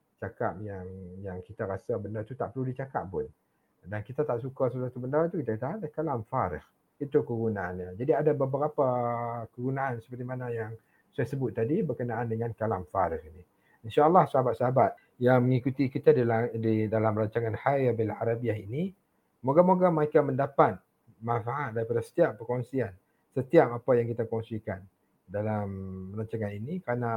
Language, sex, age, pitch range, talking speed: English, male, 50-69, 115-140 Hz, 150 wpm